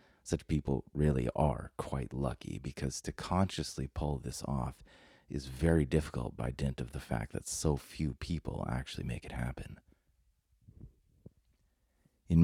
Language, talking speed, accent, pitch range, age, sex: English, 140 wpm, American, 65-85 Hz, 30-49, male